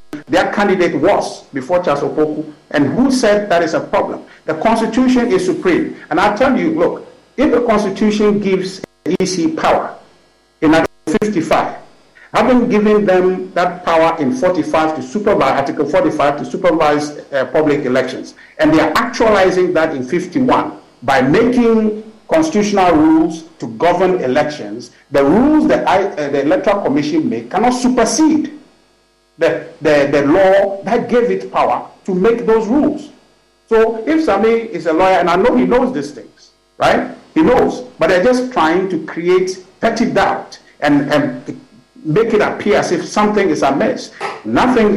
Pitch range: 170-245 Hz